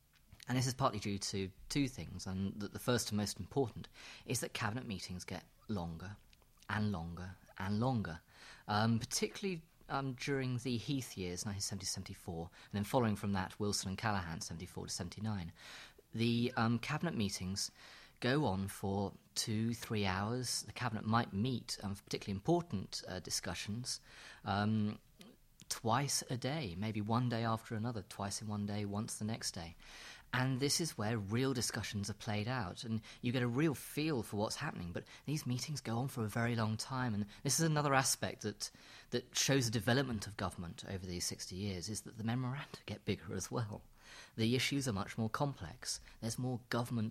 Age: 30-49